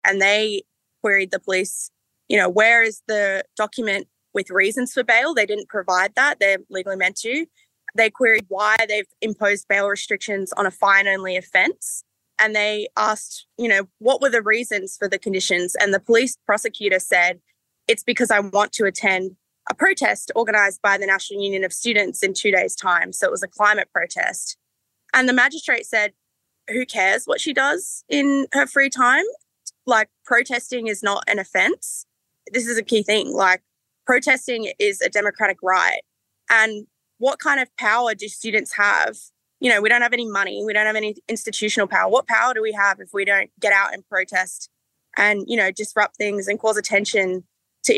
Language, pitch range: English, 195-240 Hz